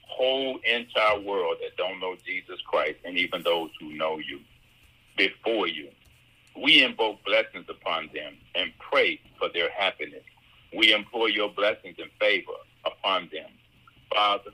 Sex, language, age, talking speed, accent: male, English, 50-69, 145 wpm, American